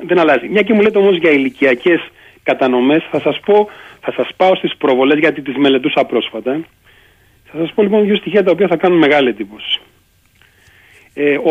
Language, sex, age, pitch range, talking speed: Greek, male, 40-59, 125-195 Hz, 165 wpm